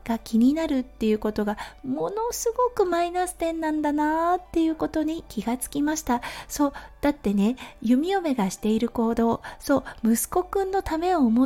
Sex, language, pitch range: female, Japanese, 230-335 Hz